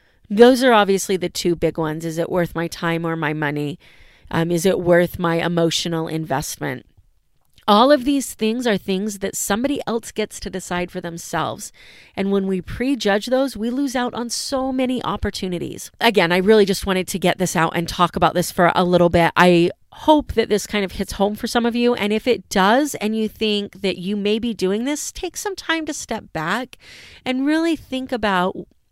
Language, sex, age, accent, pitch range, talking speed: English, female, 30-49, American, 170-215 Hz, 210 wpm